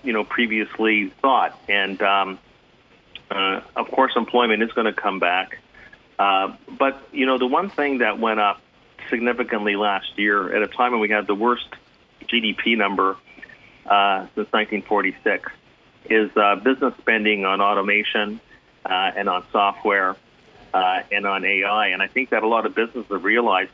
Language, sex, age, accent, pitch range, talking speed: English, male, 40-59, American, 100-125 Hz, 165 wpm